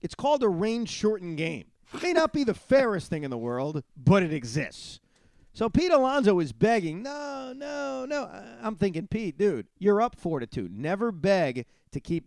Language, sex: English, male